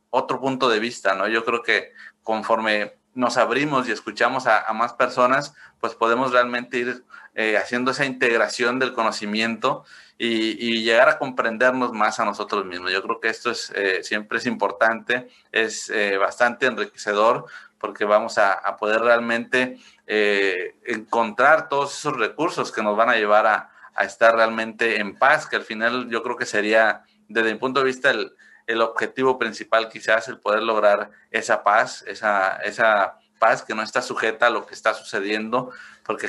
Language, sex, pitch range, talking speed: Spanish, male, 110-125 Hz, 175 wpm